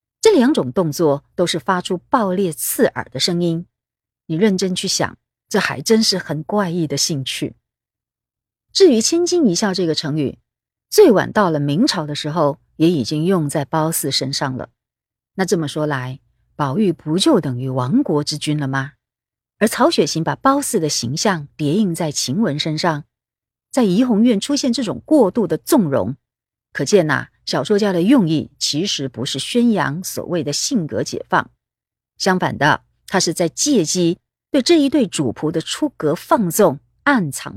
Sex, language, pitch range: female, Chinese, 150-210 Hz